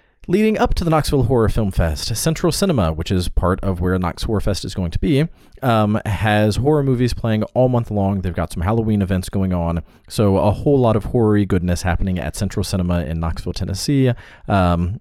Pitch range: 90-120 Hz